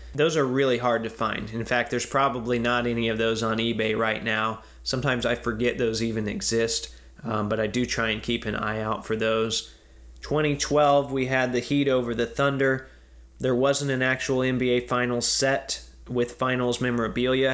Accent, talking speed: American, 185 wpm